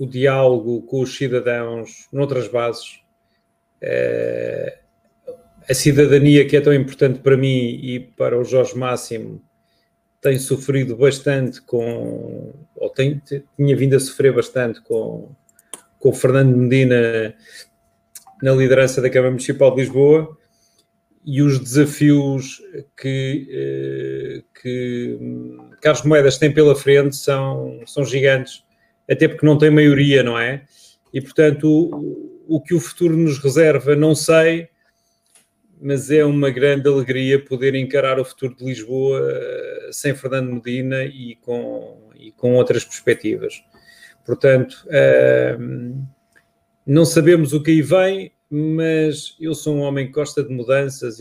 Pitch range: 130-150 Hz